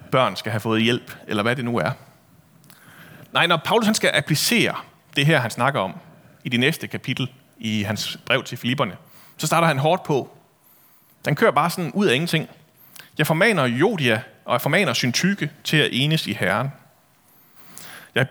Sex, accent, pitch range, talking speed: male, native, 130-180 Hz, 175 wpm